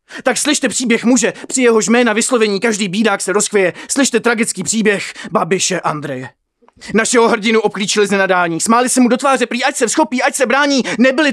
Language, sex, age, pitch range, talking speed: Czech, male, 20-39, 205-265 Hz, 185 wpm